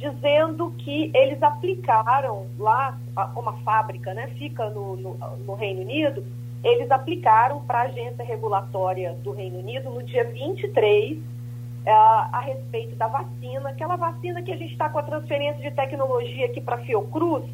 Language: Portuguese